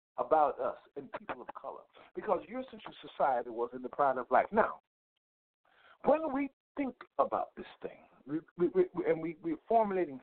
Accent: American